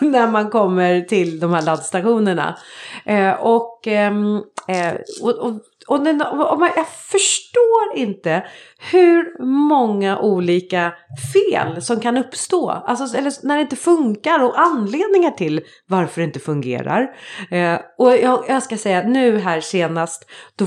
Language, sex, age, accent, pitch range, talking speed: Swedish, female, 30-49, native, 175-250 Hz, 140 wpm